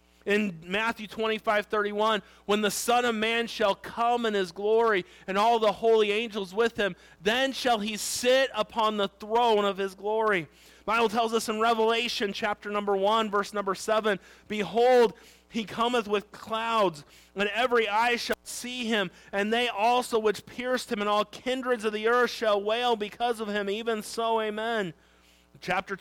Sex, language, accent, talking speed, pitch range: male, English, American, 170 wpm, 205-230 Hz